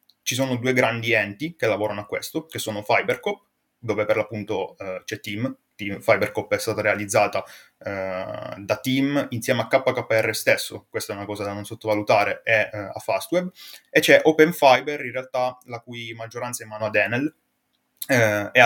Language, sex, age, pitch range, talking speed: Italian, male, 20-39, 105-125 Hz, 180 wpm